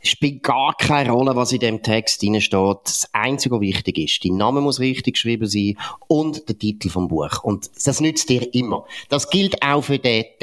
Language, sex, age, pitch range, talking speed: German, male, 30-49, 115-155 Hz, 200 wpm